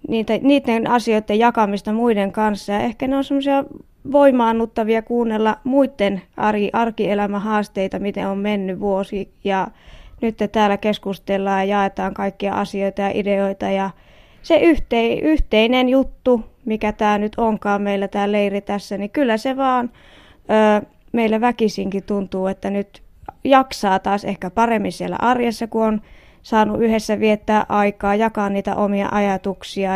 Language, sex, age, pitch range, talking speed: Finnish, female, 20-39, 200-230 Hz, 130 wpm